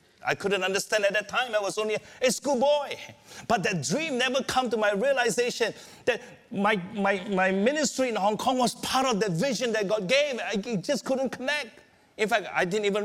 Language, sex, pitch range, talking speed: English, male, 130-210 Hz, 200 wpm